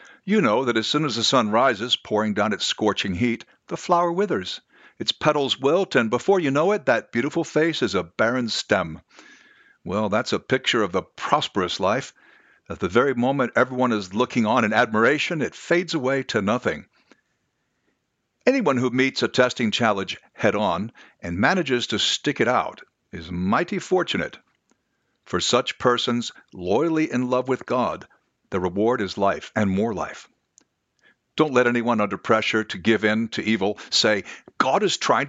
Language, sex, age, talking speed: English, male, 60-79, 170 wpm